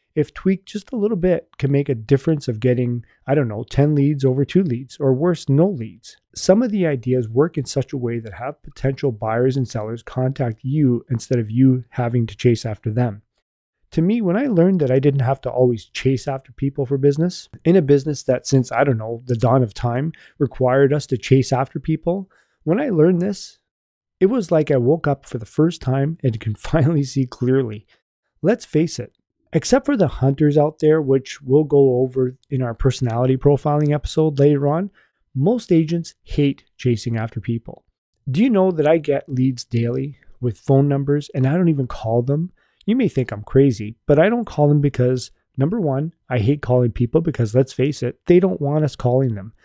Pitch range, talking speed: 125-155 Hz, 210 wpm